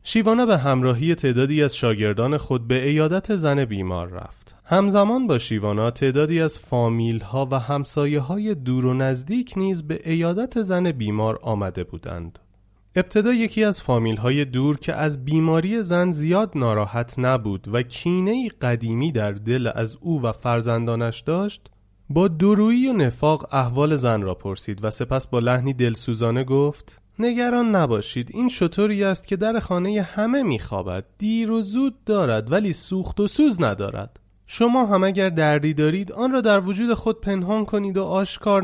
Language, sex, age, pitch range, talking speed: Persian, male, 30-49, 120-195 Hz, 155 wpm